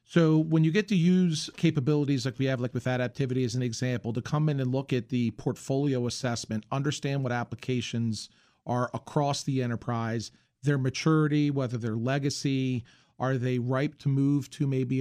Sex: male